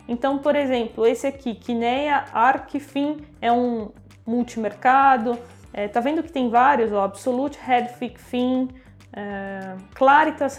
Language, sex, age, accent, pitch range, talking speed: Portuguese, female, 20-39, Brazilian, 235-295 Hz, 130 wpm